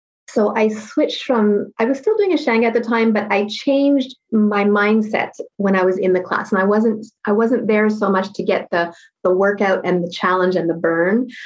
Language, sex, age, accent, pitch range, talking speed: English, female, 30-49, American, 180-220 Hz, 225 wpm